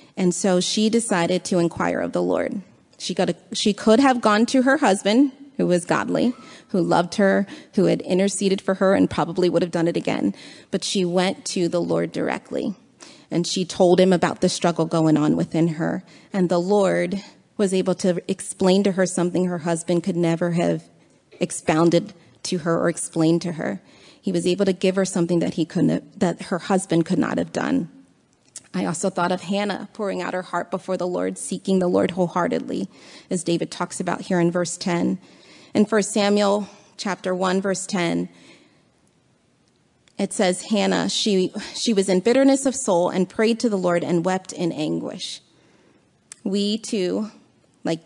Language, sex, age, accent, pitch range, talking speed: English, female, 30-49, American, 175-200 Hz, 185 wpm